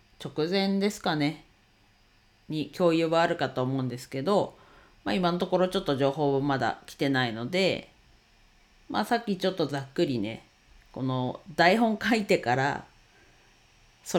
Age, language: 40-59, Japanese